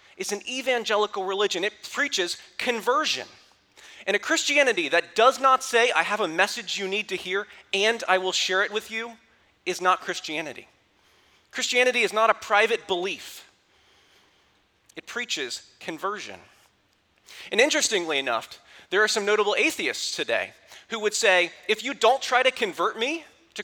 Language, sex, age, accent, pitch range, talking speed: English, male, 30-49, American, 190-255 Hz, 155 wpm